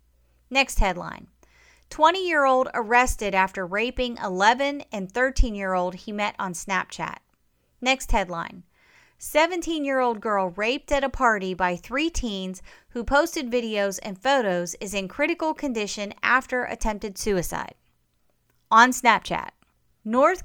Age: 30-49